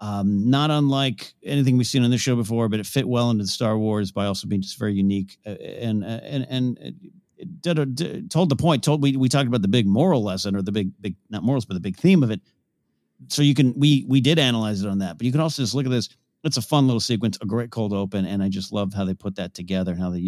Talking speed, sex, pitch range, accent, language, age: 285 wpm, male, 100-140 Hz, American, English, 50-69